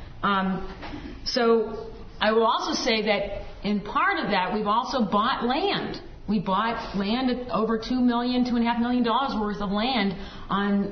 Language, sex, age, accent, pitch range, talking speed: English, female, 50-69, American, 180-225 Hz, 155 wpm